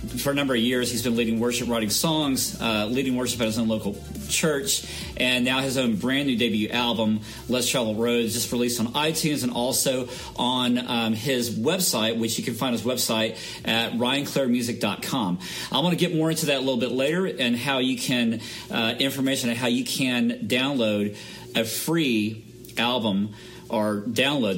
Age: 40-59